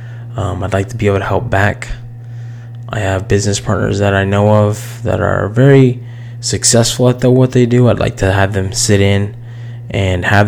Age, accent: 20-39, American